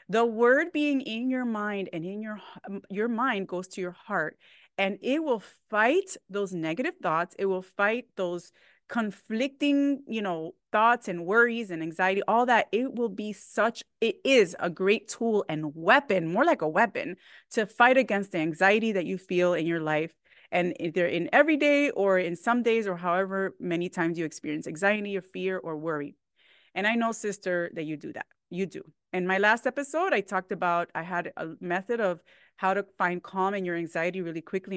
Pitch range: 175-225 Hz